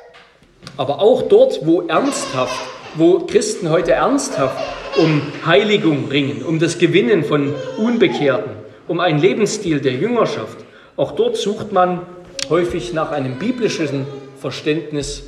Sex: male